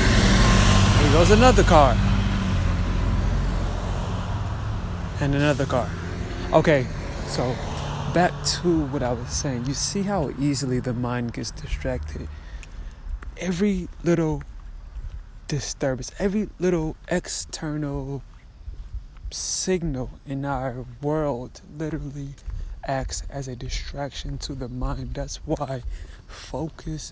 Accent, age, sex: American, 20-39, male